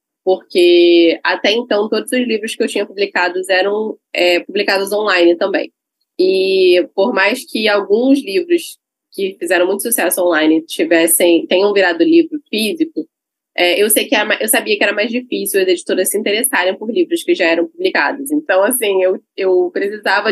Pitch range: 180-260 Hz